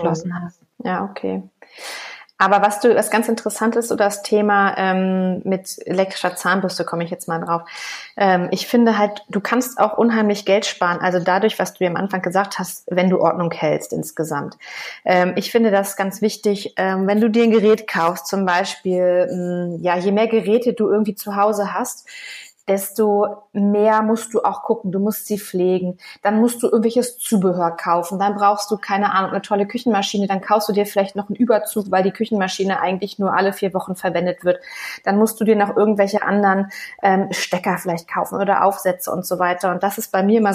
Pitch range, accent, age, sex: 185-215 Hz, German, 30-49, female